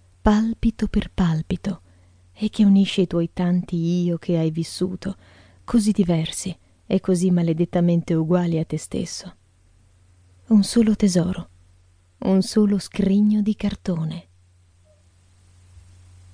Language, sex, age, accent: Italian, female, 30-49, native